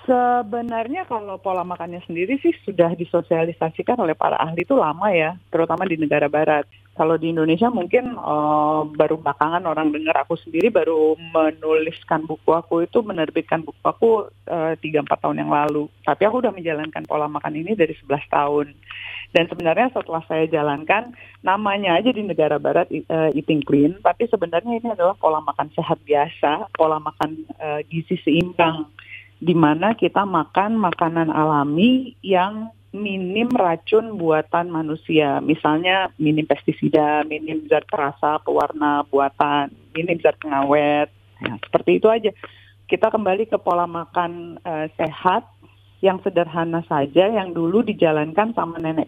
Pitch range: 150-185 Hz